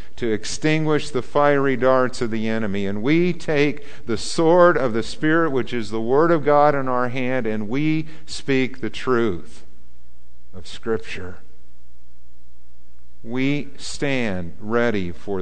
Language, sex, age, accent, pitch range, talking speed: English, male, 50-69, American, 90-145 Hz, 140 wpm